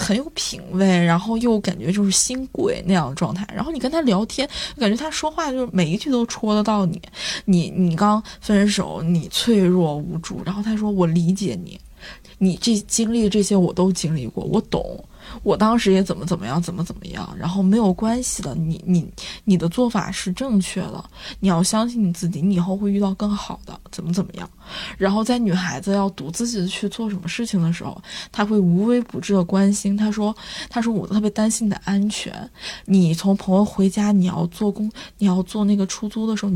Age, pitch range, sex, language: 20-39, 185-220 Hz, female, Chinese